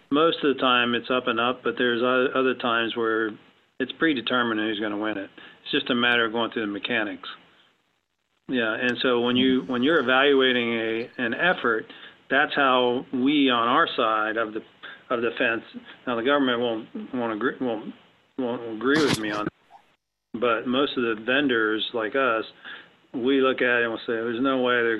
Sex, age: male, 40-59